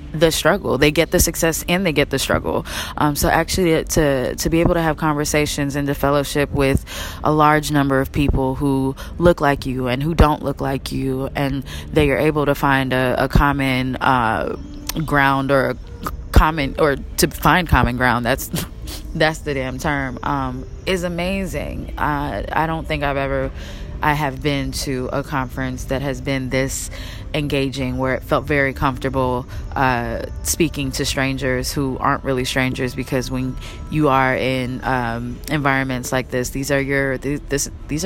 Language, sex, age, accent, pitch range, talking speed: English, female, 20-39, American, 130-155 Hz, 180 wpm